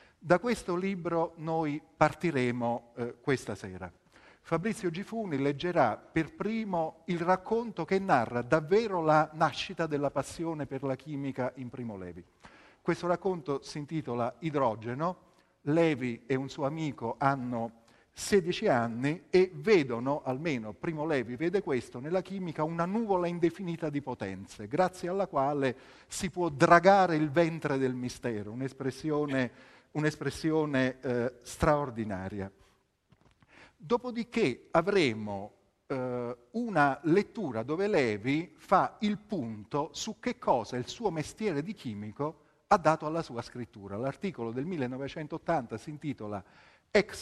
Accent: native